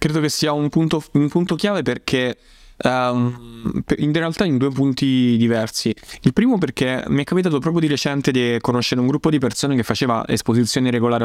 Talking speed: 185 wpm